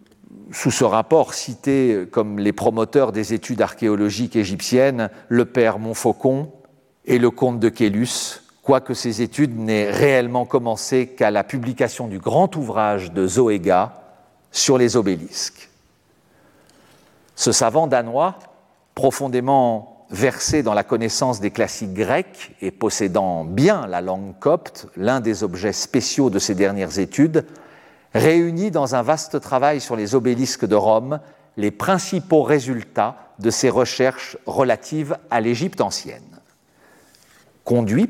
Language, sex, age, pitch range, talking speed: French, male, 50-69, 110-155 Hz, 130 wpm